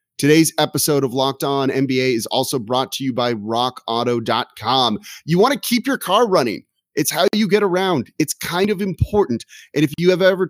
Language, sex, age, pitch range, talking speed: English, male, 30-49, 120-160 Hz, 195 wpm